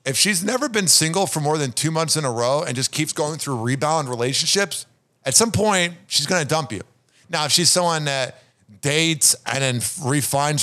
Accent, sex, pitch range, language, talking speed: American, male, 130-175 Hz, English, 210 wpm